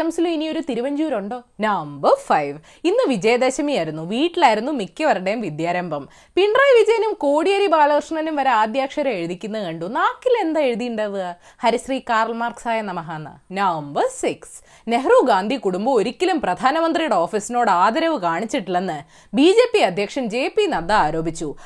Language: Malayalam